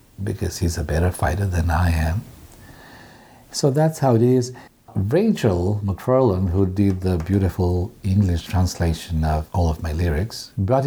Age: 50-69